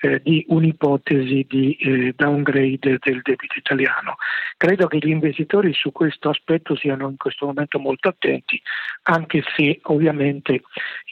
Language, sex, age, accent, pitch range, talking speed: Italian, male, 50-69, native, 135-160 Hz, 135 wpm